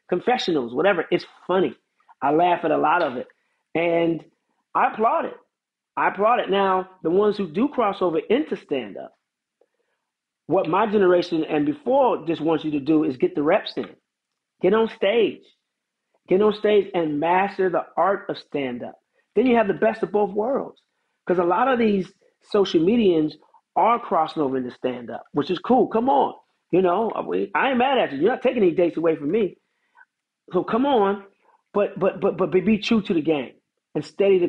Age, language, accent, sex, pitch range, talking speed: 40-59, English, American, male, 155-205 Hz, 190 wpm